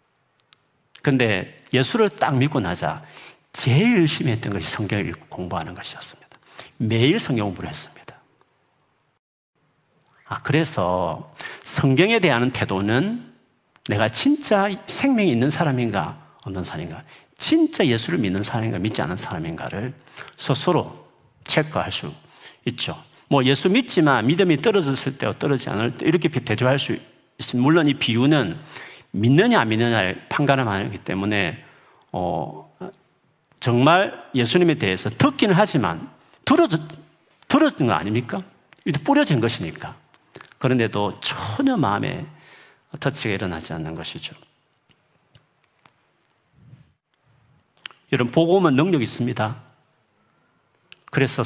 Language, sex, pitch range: Korean, male, 115-170 Hz